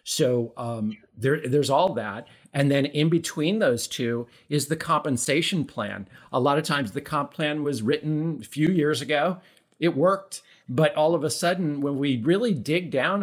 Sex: male